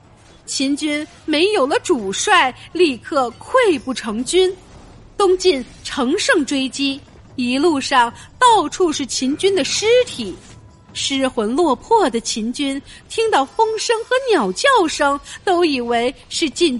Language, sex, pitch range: Chinese, female, 255-380 Hz